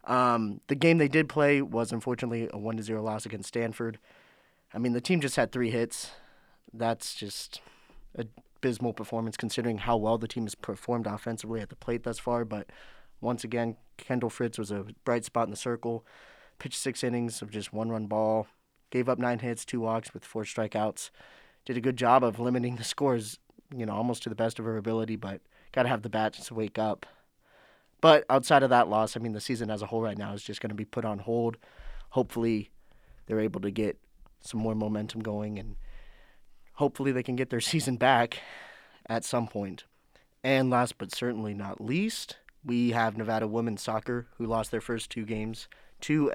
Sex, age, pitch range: male, 20-39, 110-120 Hz